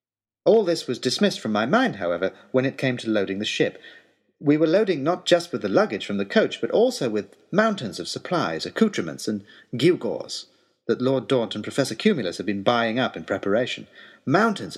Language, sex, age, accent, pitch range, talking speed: English, male, 40-59, British, 110-160 Hz, 195 wpm